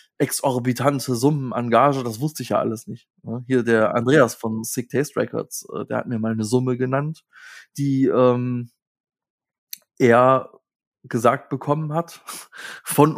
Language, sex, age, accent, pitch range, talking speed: German, male, 20-39, German, 115-135 Hz, 140 wpm